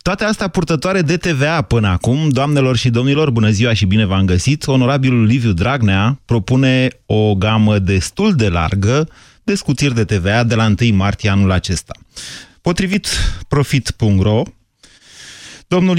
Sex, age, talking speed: male, 30-49, 145 wpm